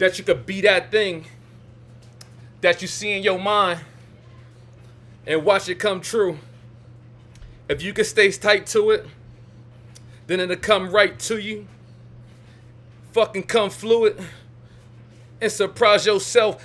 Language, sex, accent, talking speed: English, male, American, 130 wpm